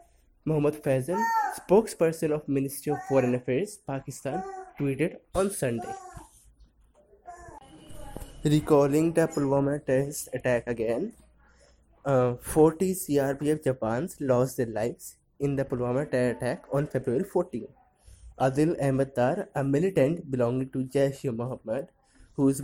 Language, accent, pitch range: English, Indian, 125-155 Hz